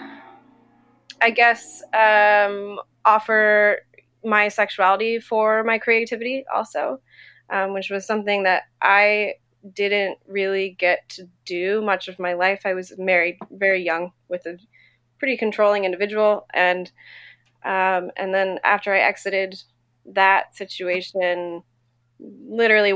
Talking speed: 120 wpm